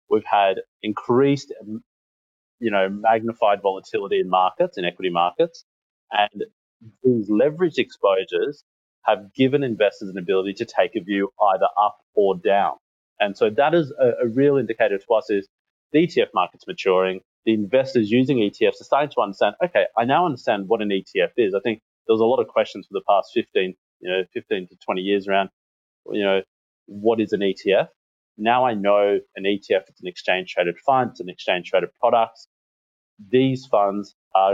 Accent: Australian